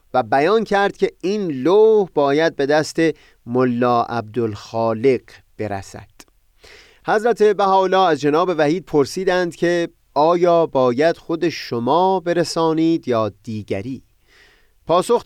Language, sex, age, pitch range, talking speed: Persian, male, 30-49, 120-180 Hz, 105 wpm